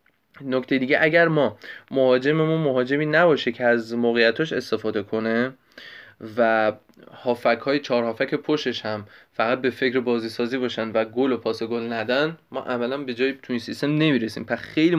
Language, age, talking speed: Persian, 20-39, 165 wpm